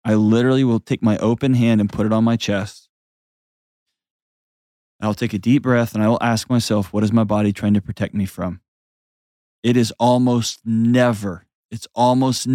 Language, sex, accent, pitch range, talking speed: English, male, American, 105-120 Hz, 180 wpm